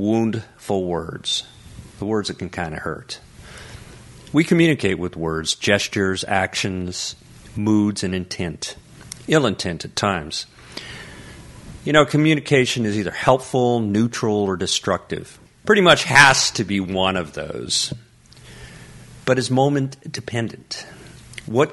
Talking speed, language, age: 120 wpm, English, 40-59